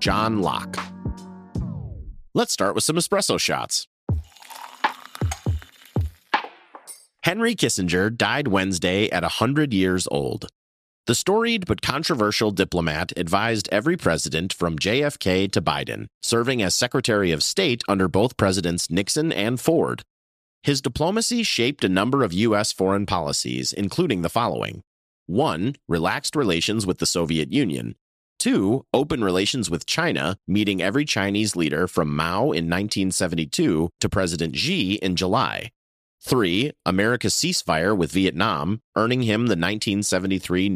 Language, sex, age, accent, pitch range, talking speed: English, male, 30-49, American, 90-125 Hz, 125 wpm